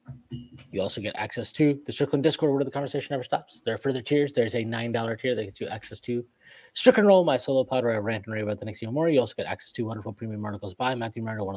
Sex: male